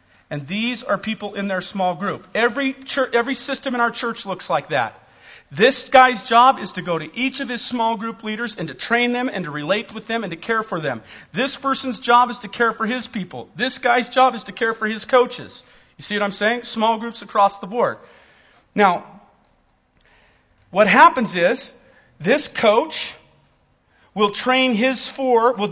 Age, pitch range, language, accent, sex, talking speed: 40-59, 195-250 Hz, English, American, male, 195 wpm